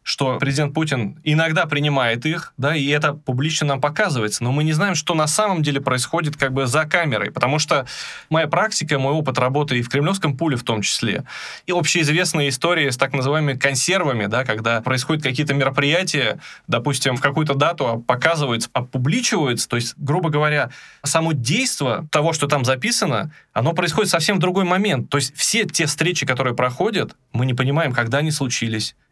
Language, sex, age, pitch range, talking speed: Russian, male, 20-39, 130-160 Hz, 175 wpm